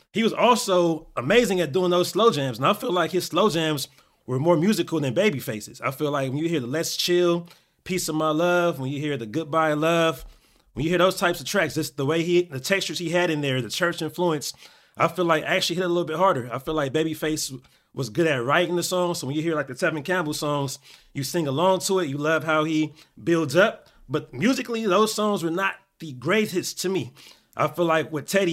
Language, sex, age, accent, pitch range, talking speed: English, male, 30-49, American, 150-185 Hz, 240 wpm